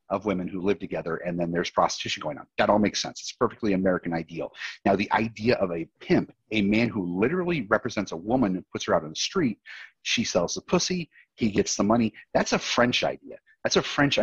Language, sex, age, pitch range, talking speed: English, male, 30-49, 95-120 Hz, 230 wpm